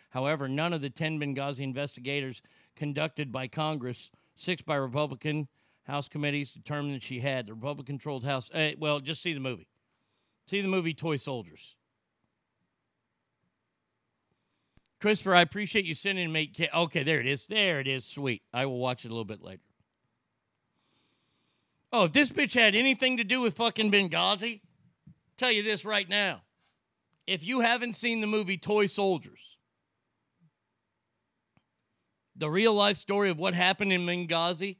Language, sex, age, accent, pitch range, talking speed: English, male, 40-59, American, 125-185 Hz, 150 wpm